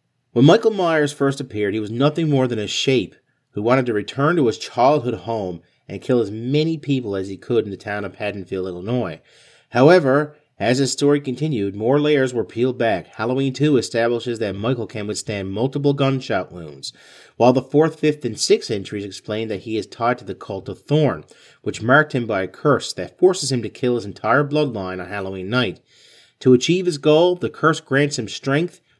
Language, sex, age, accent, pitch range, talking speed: English, male, 40-59, American, 110-140 Hz, 200 wpm